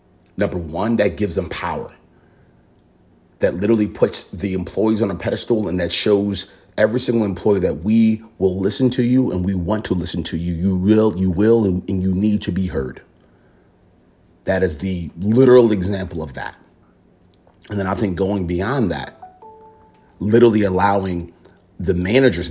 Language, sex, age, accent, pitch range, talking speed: English, male, 30-49, American, 90-105 Hz, 165 wpm